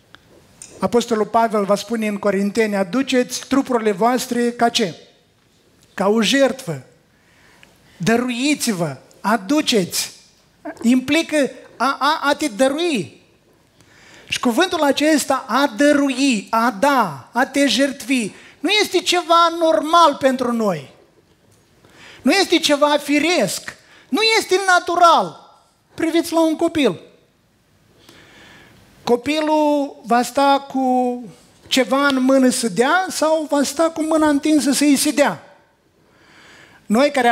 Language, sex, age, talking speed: Romanian, male, 30-49, 110 wpm